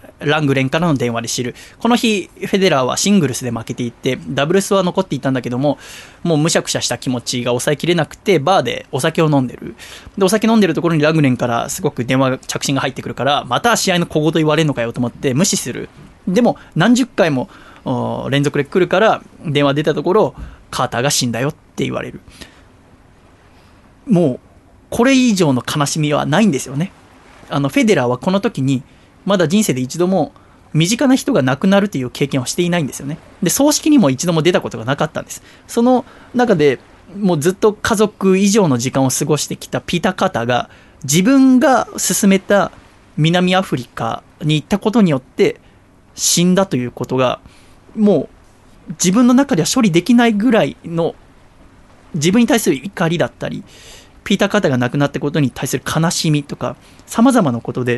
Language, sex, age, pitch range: Japanese, male, 20-39, 130-195 Hz